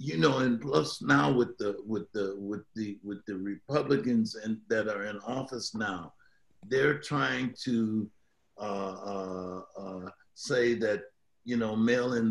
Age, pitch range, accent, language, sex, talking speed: 60-79, 105-135 Hz, American, English, male, 150 wpm